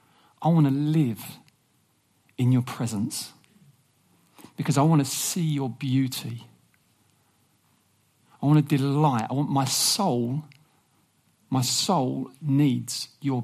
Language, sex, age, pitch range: English, male, 40-59, 155-220 Hz